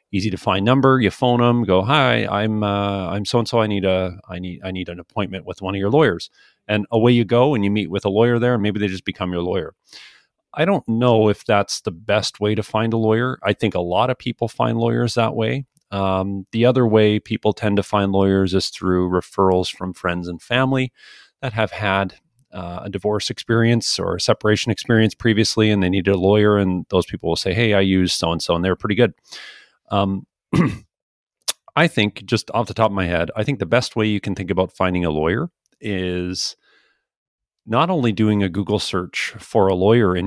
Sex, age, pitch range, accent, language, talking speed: male, 40-59, 95-115 Hz, American, English, 225 wpm